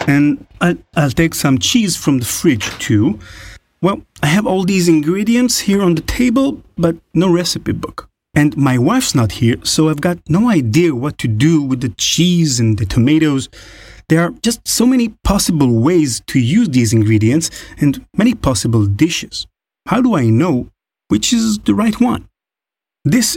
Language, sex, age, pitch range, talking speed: English, male, 30-49, 115-170 Hz, 175 wpm